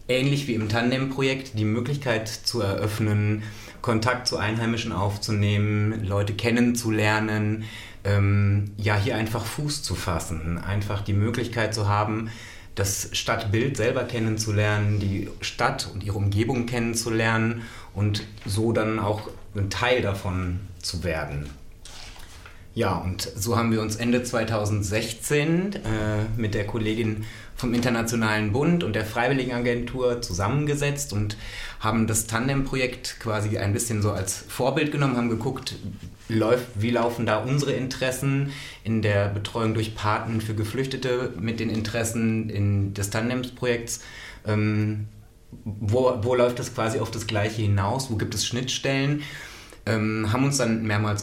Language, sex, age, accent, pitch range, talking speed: German, male, 30-49, German, 105-120 Hz, 130 wpm